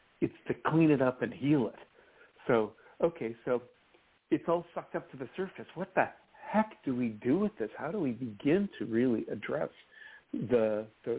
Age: 60-79